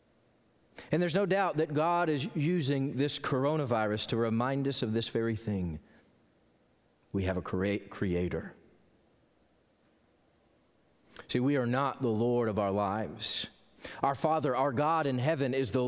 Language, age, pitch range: English, 40-59, 130-175 Hz